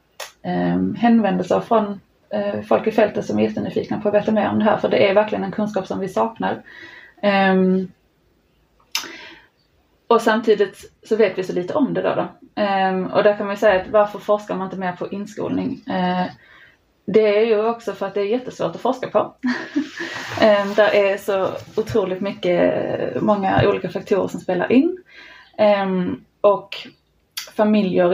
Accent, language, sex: native, Swedish, female